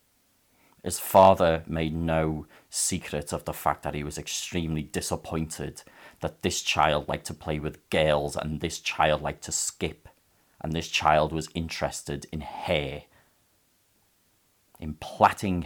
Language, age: English, 40-59